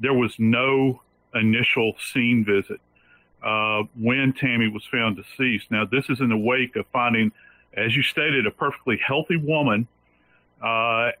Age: 50-69